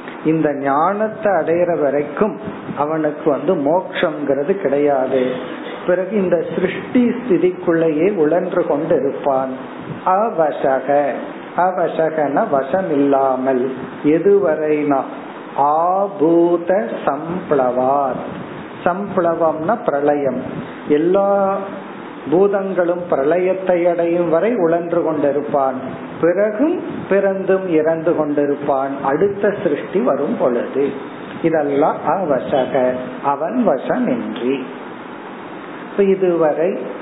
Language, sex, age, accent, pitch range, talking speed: Tamil, male, 50-69, native, 140-190 Hz, 50 wpm